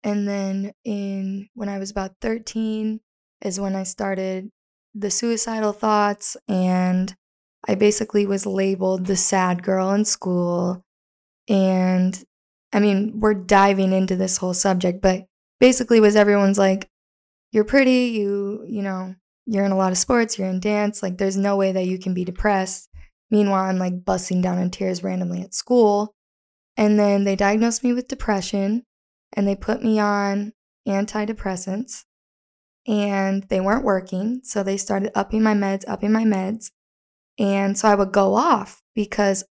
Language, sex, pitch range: English, female, 195-215 Hz